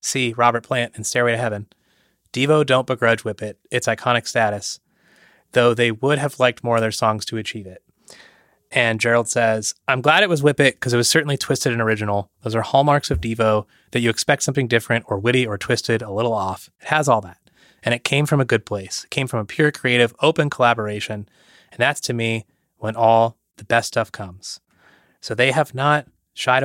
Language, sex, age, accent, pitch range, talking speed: English, male, 30-49, American, 110-125 Hz, 210 wpm